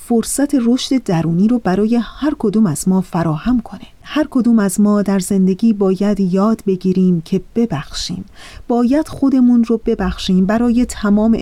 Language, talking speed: Persian, 145 wpm